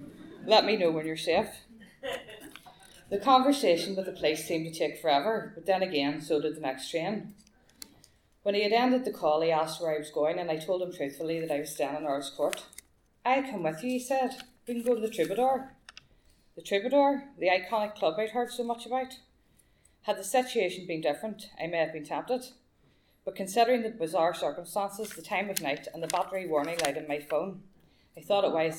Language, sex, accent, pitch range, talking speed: English, female, Irish, 155-215 Hz, 210 wpm